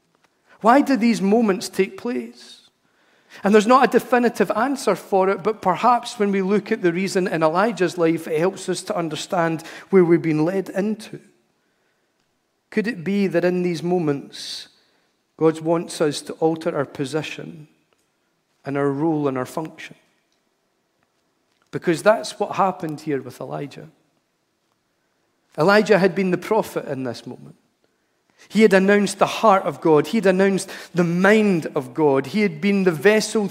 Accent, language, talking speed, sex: British, English, 160 wpm, male